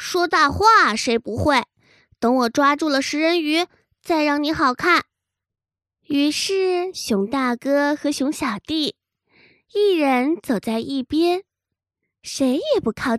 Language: Chinese